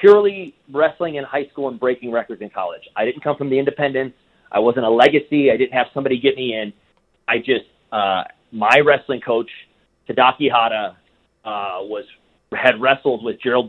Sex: male